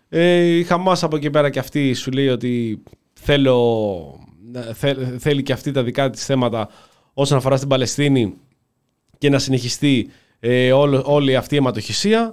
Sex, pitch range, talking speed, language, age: male, 120-165 Hz, 160 wpm, Greek, 20-39